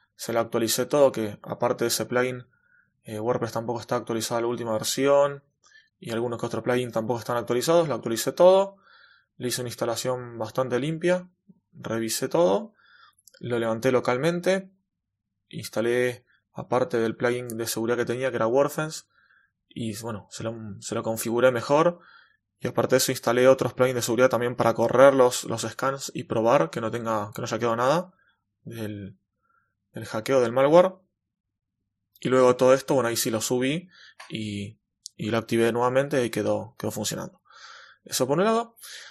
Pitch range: 115-140 Hz